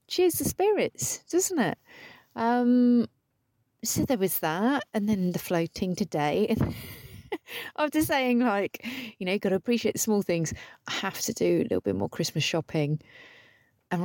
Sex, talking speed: female, 165 wpm